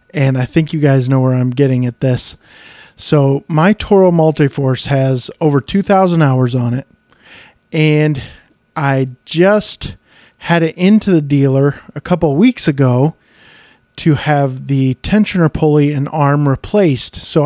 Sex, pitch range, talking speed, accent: male, 135-160 Hz, 150 wpm, American